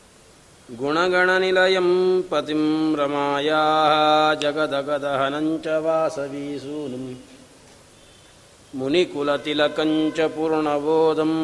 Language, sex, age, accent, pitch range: Kannada, male, 50-69, native, 150-160 Hz